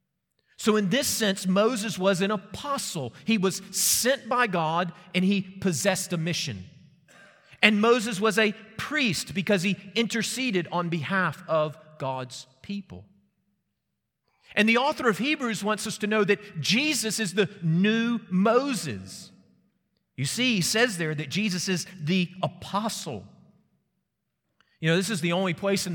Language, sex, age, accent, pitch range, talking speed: English, male, 40-59, American, 155-200 Hz, 150 wpm